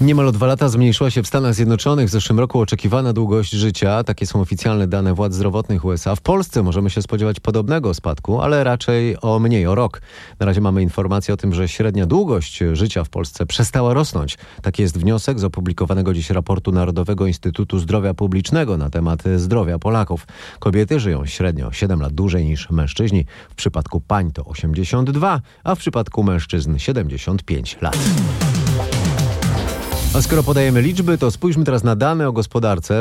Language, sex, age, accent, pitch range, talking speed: Polish, male, 30-49, native, 90-120 Hz, 170 wpm